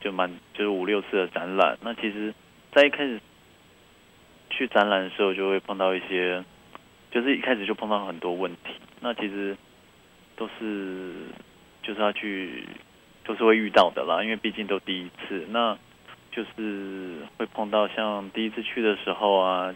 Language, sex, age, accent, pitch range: Chinese, male, 20-39, native, 95-110 Hz